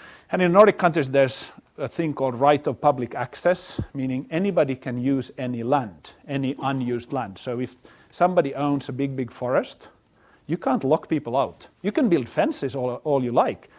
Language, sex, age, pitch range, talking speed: English, male, 50-69, 125-150 Hz, 185 wpm